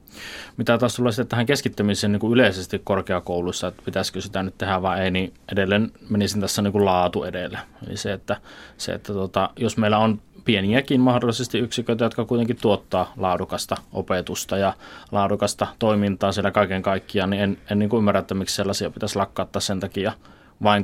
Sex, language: male, Finnish